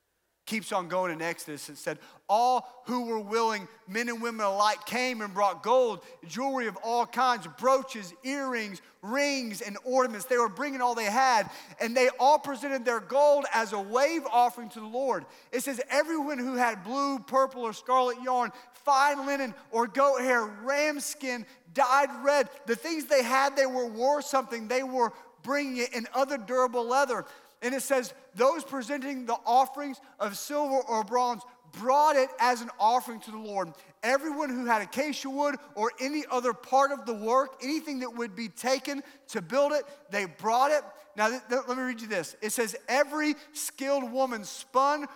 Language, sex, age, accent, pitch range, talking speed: English, male, 40-59, American, 225-275 Hz, 180 wpm